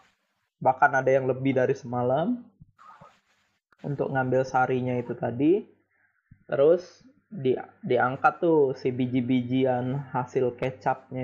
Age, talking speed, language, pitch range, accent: 20-39, 100 wpm, Indonesian, 125-140 Hz, native